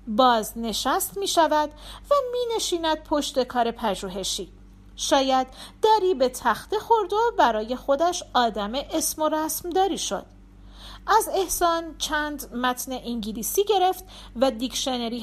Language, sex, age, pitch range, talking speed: Persian, female, 40-59, 230-310 Hz, 125 wpm